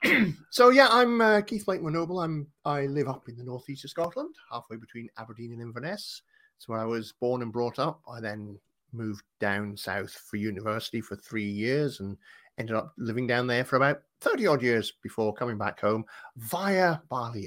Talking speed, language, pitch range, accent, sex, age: 190 wpm, English, 110-145 Hz, British, male, 30-49